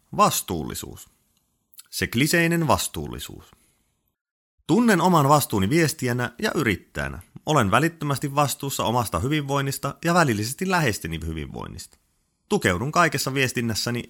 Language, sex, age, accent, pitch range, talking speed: Finnish, male, 30-49, native, 115-165 Hz, 90 wpm